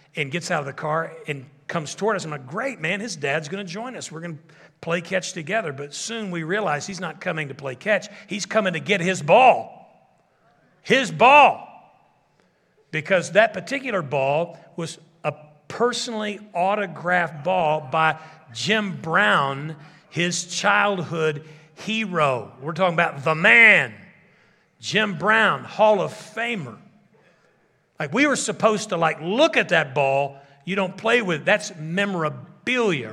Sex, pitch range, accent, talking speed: male, 155-205 Hz, American, 155 wpm